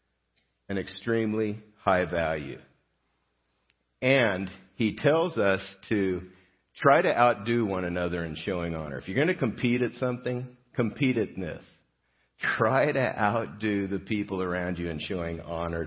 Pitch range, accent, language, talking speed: 90-120 Hz, American, English, 140 wpm